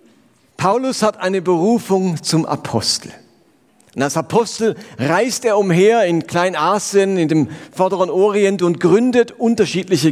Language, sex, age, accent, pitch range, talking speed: German, male, 40-59, German, 160-215 Hz, 125 wpm